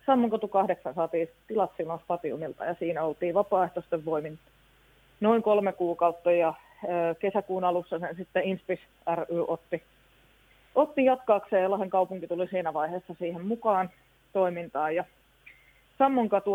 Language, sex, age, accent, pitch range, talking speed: Finnish, female, 20-39, native, 175-200 Hz, 120 wpm